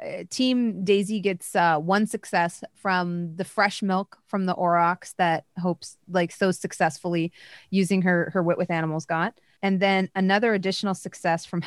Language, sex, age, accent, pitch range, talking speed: English, female, 20-39, American, 165-190 Hz, 160 wpm